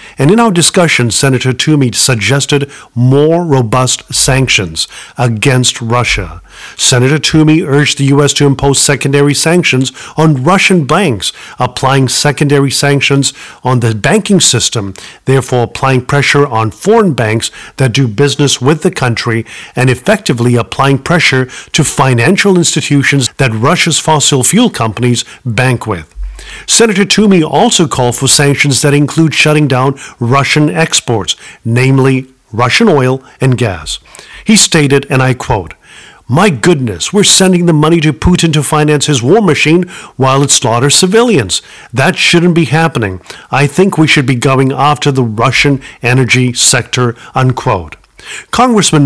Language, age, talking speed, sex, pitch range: English, 50-69, 140 wpm, male, 130-160 Hz